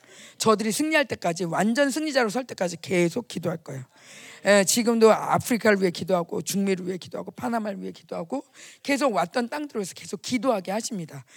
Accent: native